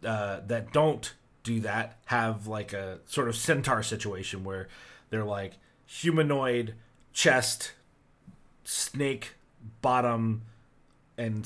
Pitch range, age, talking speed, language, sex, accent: 110-140 Hz, 30-49, 105 wpm, English, male, American